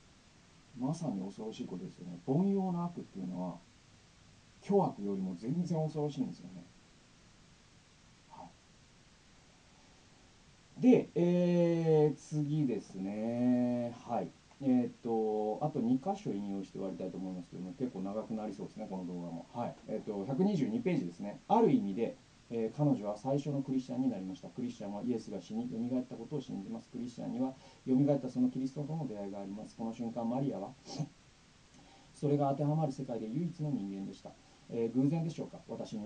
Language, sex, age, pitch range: Japanese, male, 40-59, 115-150 Hz